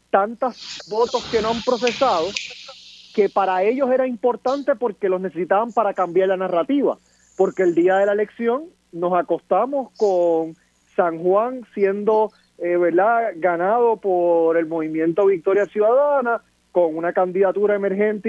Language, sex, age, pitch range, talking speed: Spanish, male, 30-49, 185-230 Hz, 140 wpm